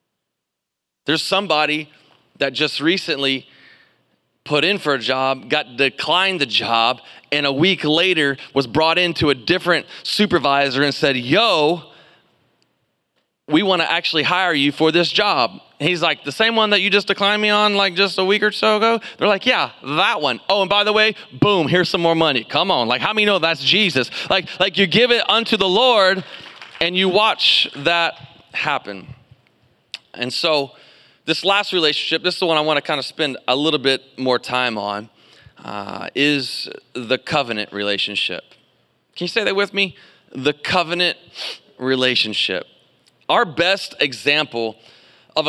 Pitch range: 130-180 Hz